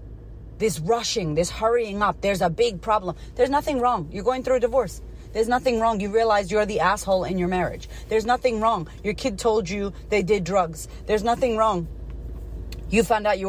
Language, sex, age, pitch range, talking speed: English, female, 30-49, 170-230 Hz, 200 wpm